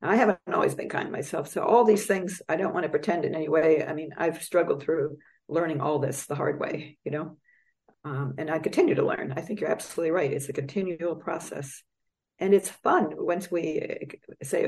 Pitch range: 145-205 Hz